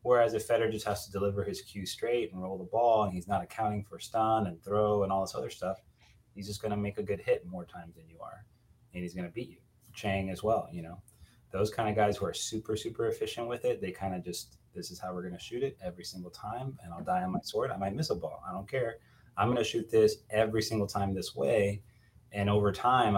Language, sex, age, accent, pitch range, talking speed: English, male, 30-49, American, 90-110 Hz, 270 wpm